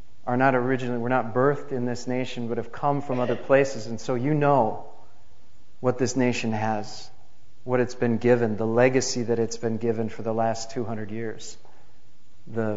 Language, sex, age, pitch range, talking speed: English, male, 40-59, 110-130 Hz, 185 wpm